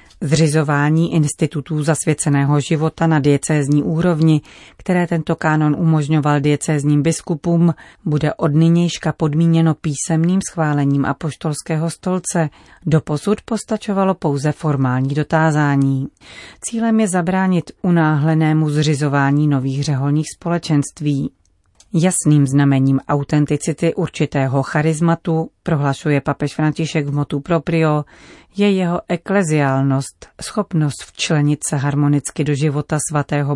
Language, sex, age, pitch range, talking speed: Czech, female, 40-59, 145-165 Hz, 100 wpm